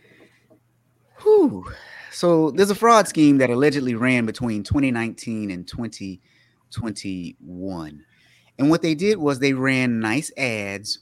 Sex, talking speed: male, 115 wpm